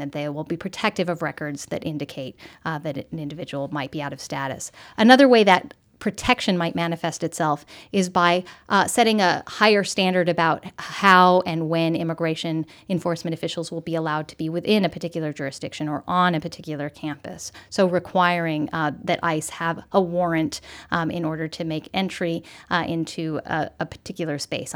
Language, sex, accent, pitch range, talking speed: English, female, American, 155-190 Hz, 175 wpm